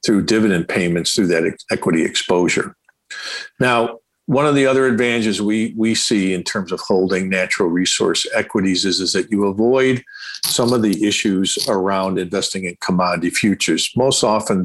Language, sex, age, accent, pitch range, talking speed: English, male, 50-69, American, 95-120 Hz, 160 wpm